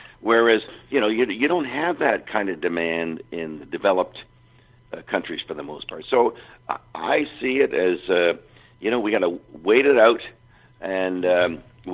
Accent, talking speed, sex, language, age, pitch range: American, 185 wpm, male, English, 50-69, 90-125 Hz